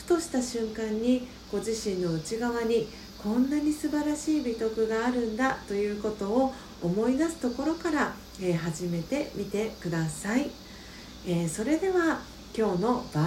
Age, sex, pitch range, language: 40-59, female, 185-255 Hz, Japanese